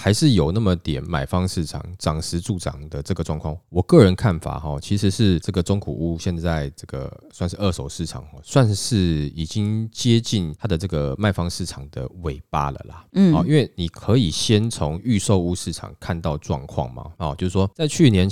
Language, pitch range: Chinese, 80-105 Hz